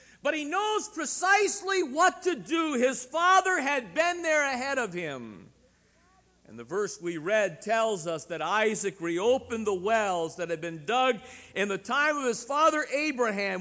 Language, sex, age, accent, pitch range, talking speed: English, male, 50-69, American, 210-290 Hz, 170 wpm